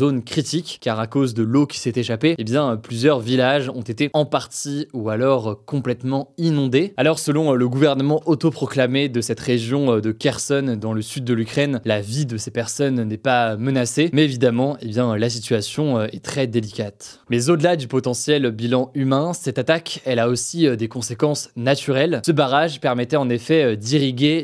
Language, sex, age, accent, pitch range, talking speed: French, male, 20-39, French, 120-145 Hz, 185 wpm